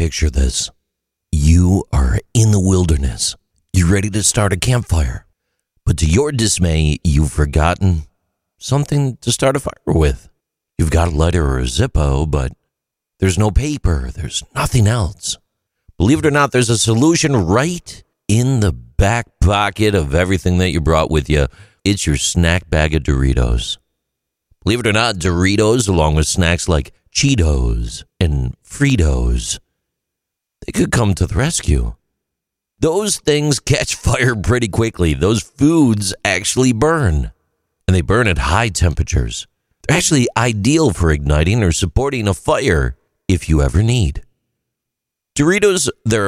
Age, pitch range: 50-69, 80-115 Hz